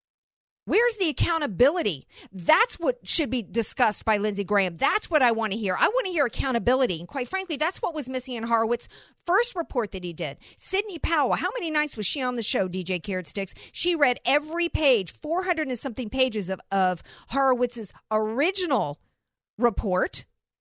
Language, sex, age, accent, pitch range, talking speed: English, female, 50-69, American, 240-295 Hz, 185 wpm